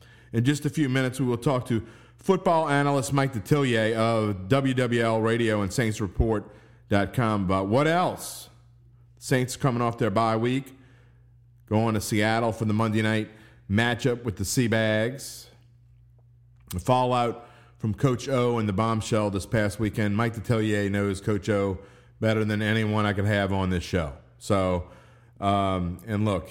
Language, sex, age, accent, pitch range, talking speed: English, male, 40-59, American, 105-120 Hz, 150 wpm